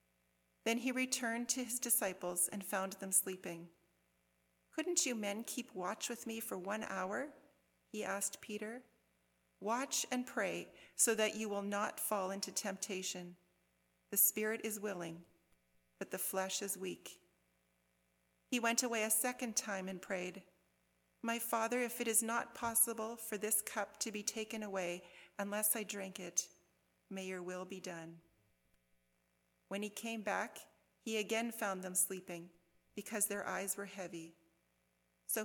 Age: 40-59